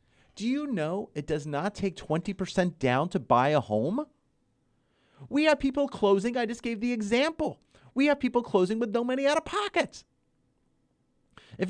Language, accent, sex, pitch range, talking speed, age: English, American, male, 165-245 Hz, 170 wpm, 40-59